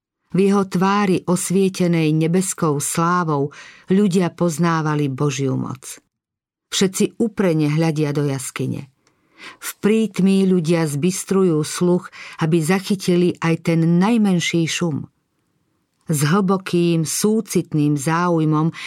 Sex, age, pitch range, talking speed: female, 50-69, 150-185 Hz, 95 wpm